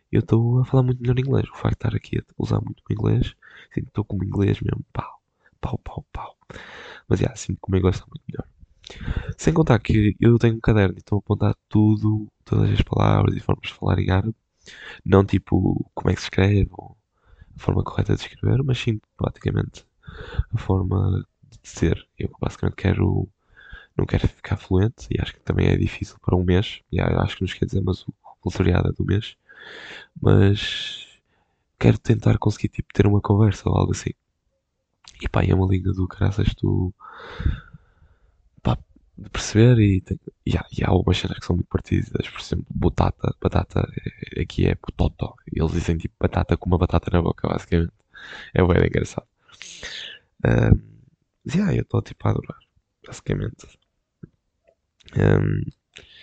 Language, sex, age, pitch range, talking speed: Portuguese, male, 10-29, 95-115 Hz, 180 wpm